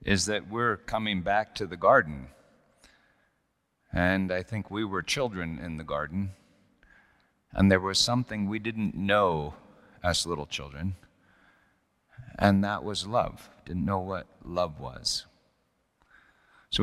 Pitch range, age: 90-110 Hz, 40-59